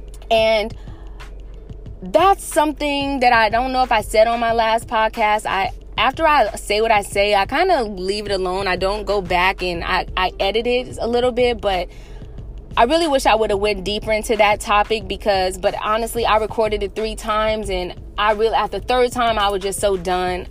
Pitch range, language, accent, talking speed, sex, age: 200-245 Hz, English, American, 205 wpm, female, 20-39